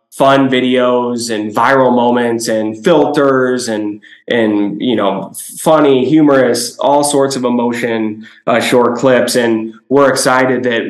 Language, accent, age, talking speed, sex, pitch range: English, American, 20-39, 130 wpm, male, 110-130 Hz